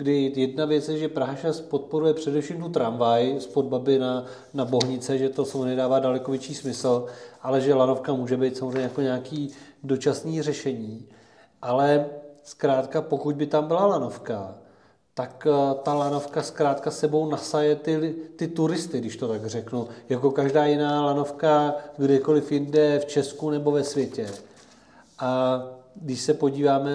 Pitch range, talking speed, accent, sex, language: 135-150 Hz, 150 wpm, native, male, Czech